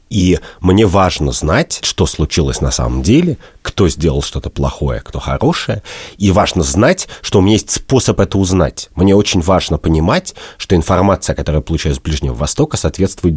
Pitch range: 80-100 Hz